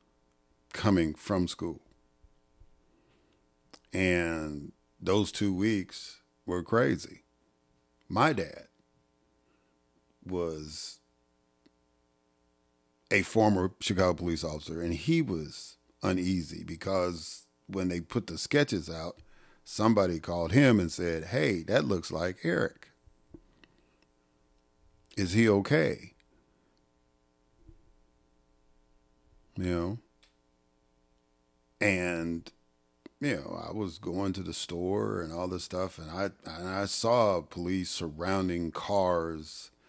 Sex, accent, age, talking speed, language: male, American, 50-69, 95 wpm, English